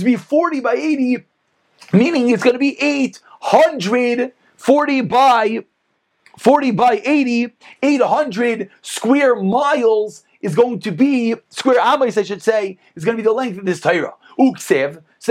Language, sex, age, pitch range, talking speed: English, male, 30-49, 215-280 Hz, 145 wpm